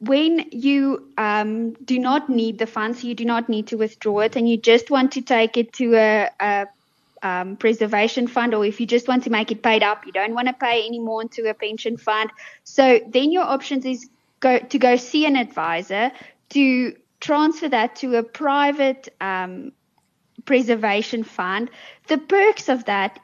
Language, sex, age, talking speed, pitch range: English, female, 20-39, 190 wpm, 220-265 Hz